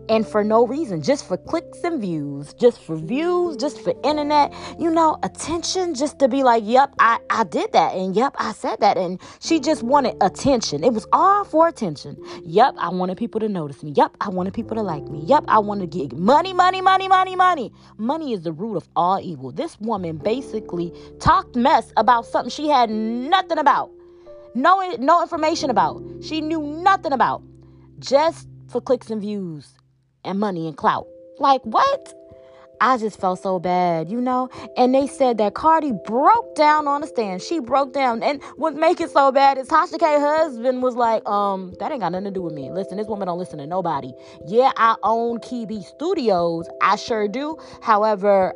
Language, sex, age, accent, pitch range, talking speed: English, female, 20-39, American, 185-300 Hz, 200 wpm